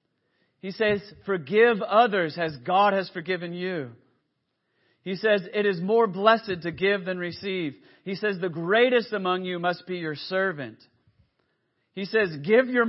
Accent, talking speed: American, 155 wpm